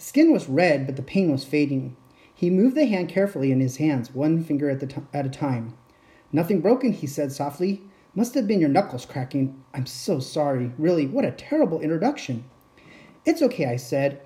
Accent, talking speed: American, 190 wpm